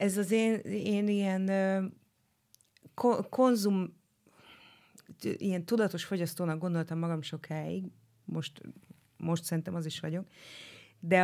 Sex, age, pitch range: female, 30-49, 155-180 Hz